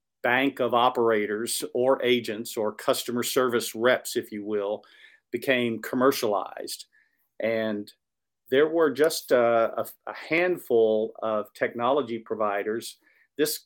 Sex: male